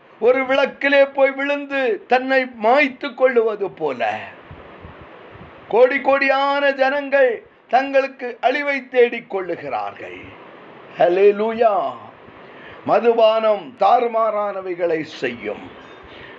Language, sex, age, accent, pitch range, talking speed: Tamil, male, 50-69, native, 245-280 Hz, 60 wpm